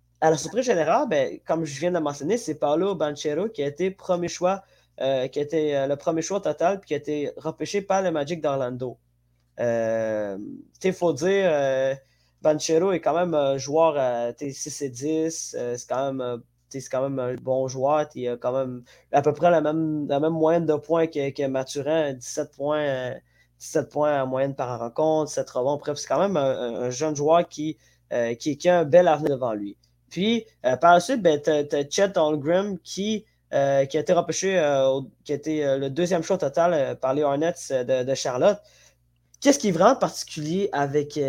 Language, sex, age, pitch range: French, male, 20-39, 125-165 Hz